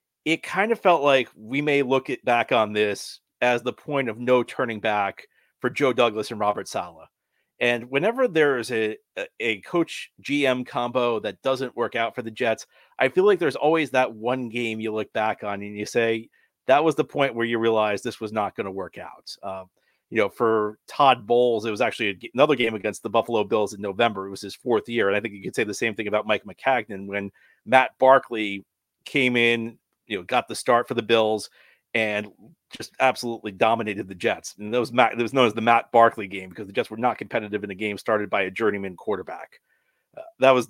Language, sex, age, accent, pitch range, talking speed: English, male, 40-59, American, 110-140 Hz, 225 wpm